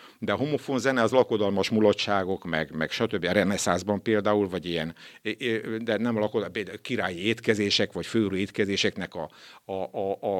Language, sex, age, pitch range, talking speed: Hungarian, male, 60-79, 95-120 Hz, 165 wpm